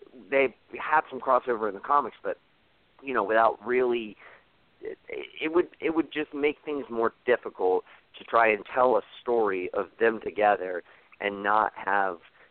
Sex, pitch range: male, 95-145 Hz